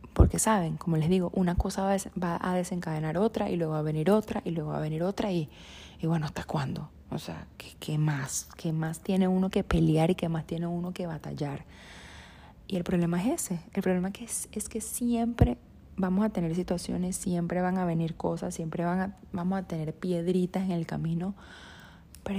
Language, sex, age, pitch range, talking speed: Spanish, female, 20-39, 160-190 Hz, 200 wpm